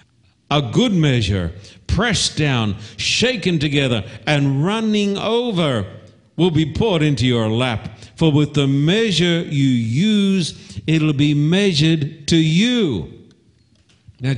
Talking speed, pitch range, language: 120 wpm, 115-170 Hz, English